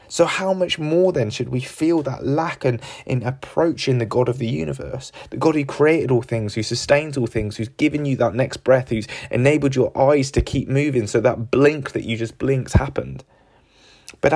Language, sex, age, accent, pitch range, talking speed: English, male, 20-39, British, 125-160 Hz, 210 wpm